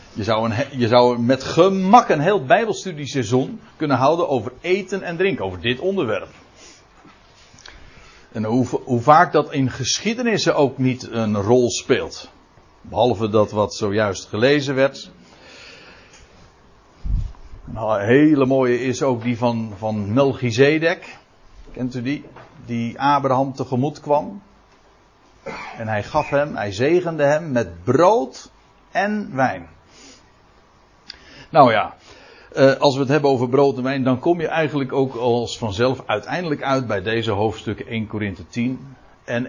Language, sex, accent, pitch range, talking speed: Dutch, male, Dutch, 120-160 Hz, 140 wpm